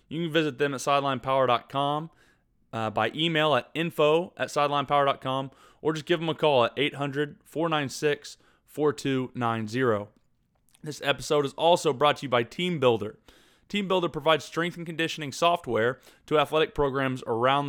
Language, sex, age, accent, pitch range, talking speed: English, male, 20-39, American, 120-150 Hz, 135 wpm